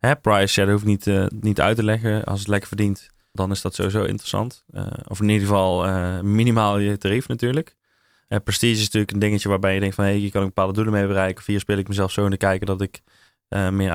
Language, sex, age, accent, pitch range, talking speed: Dutch, male, 20-39, Dutch, 95-105 Hz, 260 wpm